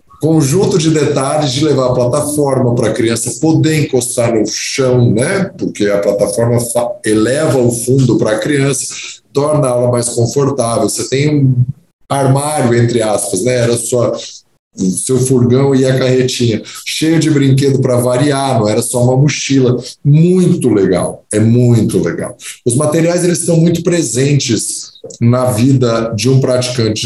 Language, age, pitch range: Portuguese, 20-39, 120-150 Hz